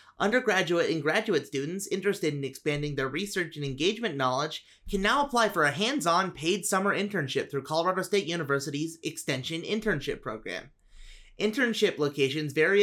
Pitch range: 140-200 Hz